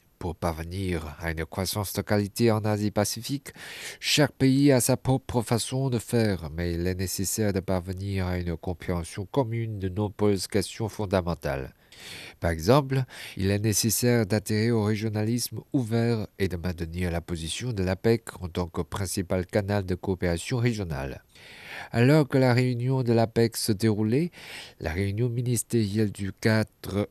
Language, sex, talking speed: French, male, 150 wpm